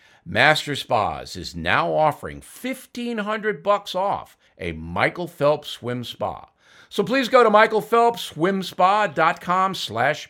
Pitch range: 120-185 Hz